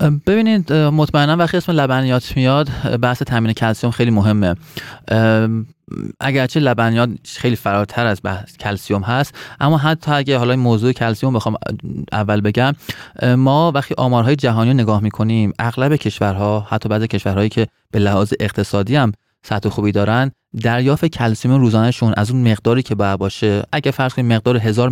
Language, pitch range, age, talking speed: Persian, 105-130 Hz, 30-49, 150 wpm